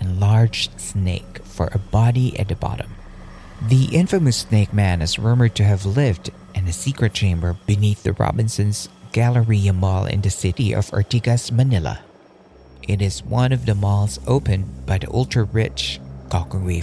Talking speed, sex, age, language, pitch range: 155 wpm, male, 40-59, Filipino, 95-115 Hz